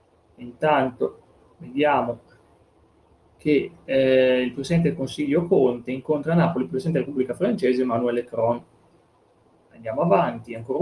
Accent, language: native, Italian